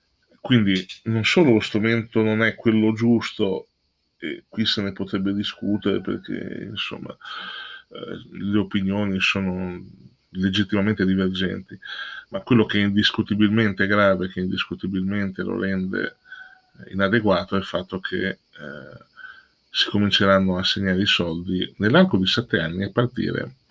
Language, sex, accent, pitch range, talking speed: Italian, male, native, 95-105 Hz, 130 wpm